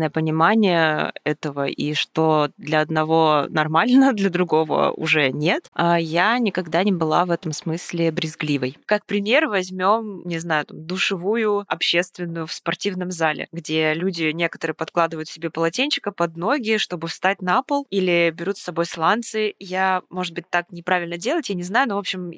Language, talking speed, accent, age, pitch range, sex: Russian, 155 wpm, native, 20-39, 160-190 Hz, female